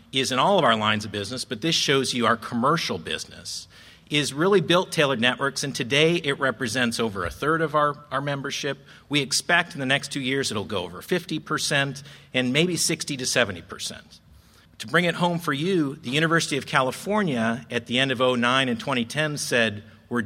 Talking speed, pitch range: 195 wpm, 115-145 Hz